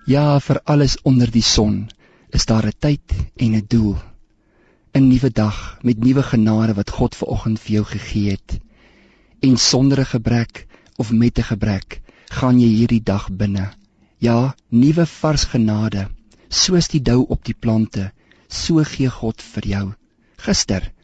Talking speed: 160 wpm